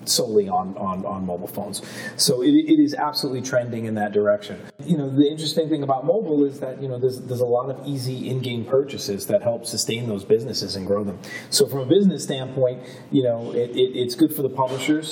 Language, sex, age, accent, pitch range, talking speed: English, male, 30-49, American, 110-145 Hz, 220 wpm